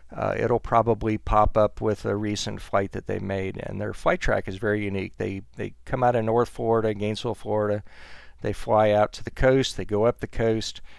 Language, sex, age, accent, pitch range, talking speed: English, male, 40-59, American, 95-115 Hz, 215 wpm